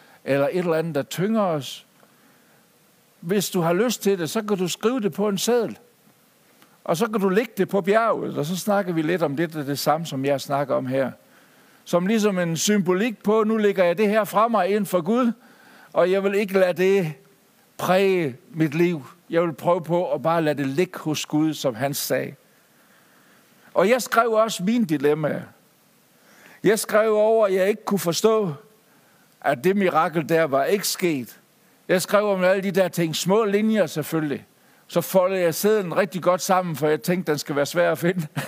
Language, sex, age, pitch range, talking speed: Danish, male, 60-79, 150-200 Hz, 200 wpm